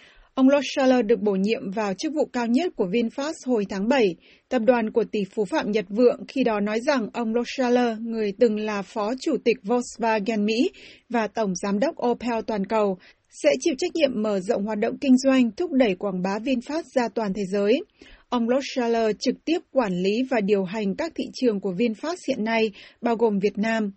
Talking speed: 210 wpm